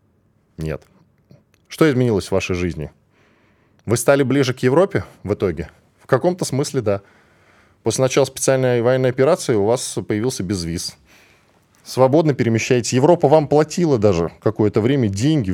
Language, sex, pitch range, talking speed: Russian, male, 100-145 Hz, 135 wpm